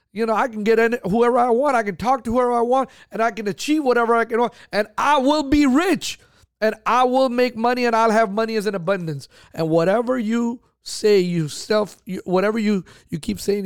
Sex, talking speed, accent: male, 235 wpm, American